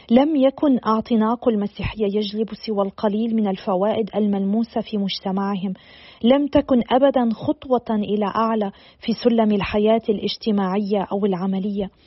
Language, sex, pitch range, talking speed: Arabic, female, 210-240 Hz, 120 wpm